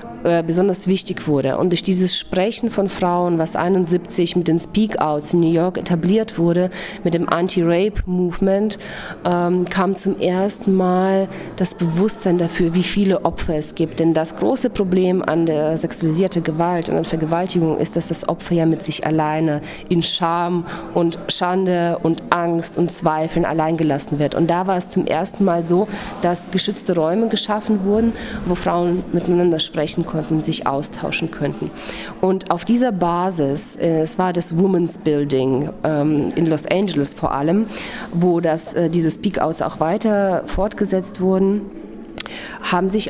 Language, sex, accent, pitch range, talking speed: German, female, German, 160-185 Hz, 155 wpm